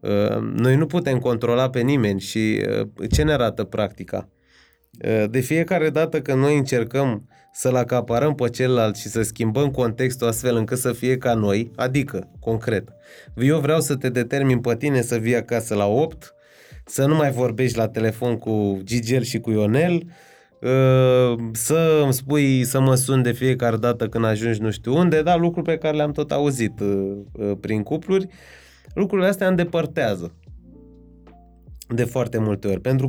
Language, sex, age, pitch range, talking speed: Romanian, male, 20-39, 110-135 Hz, 160 wpm